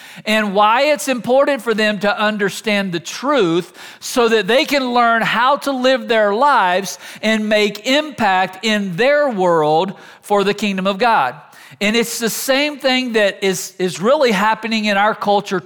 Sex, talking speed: male, 170 wpm